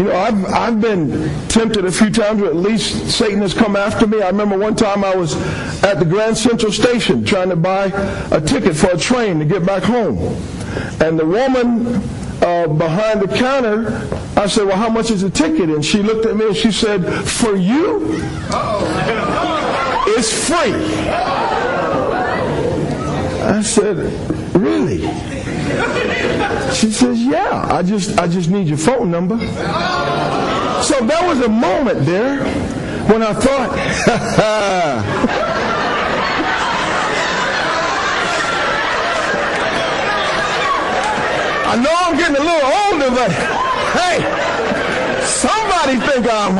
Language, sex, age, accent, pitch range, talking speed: English, male, 50-69, American, 195-240 Hz, 130 wpm